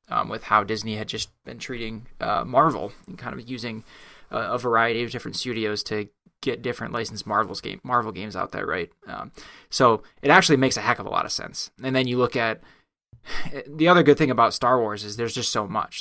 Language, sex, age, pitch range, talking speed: English, male, 20-39, 110-125 Hz, 225 wpm